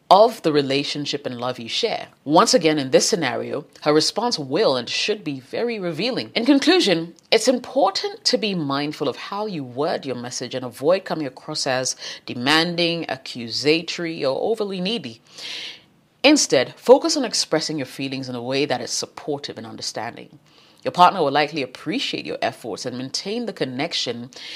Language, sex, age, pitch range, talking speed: English, female, 30-49, 130-175 Hz, 165 wpm